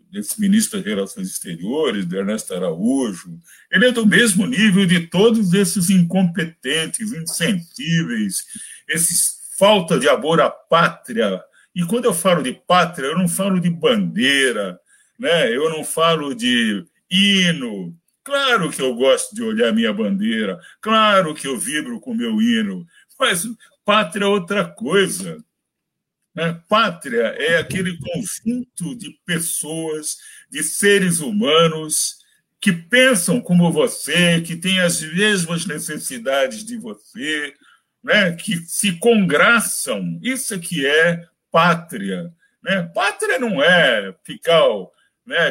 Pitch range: 170-230 Hz